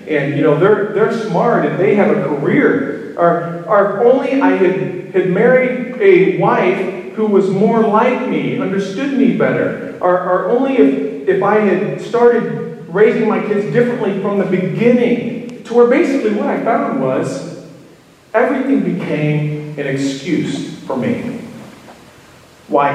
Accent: American